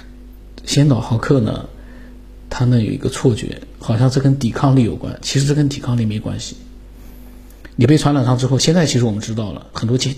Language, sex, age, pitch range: Chinese, male, 50-69, 115-135 Hz